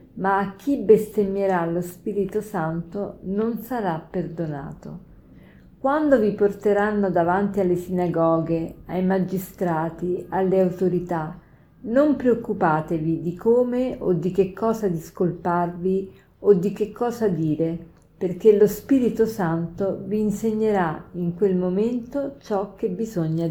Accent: native